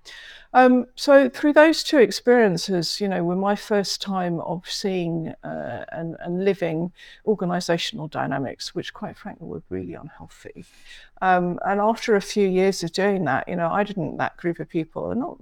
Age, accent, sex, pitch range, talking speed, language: 50-69, British, female, 175-220 Hz, 170 wpm, English